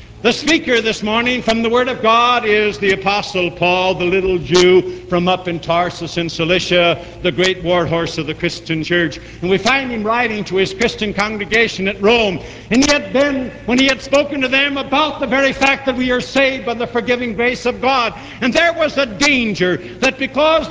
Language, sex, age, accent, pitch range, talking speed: English, male, 70-89, American, 195-260 Hz, 205 wpm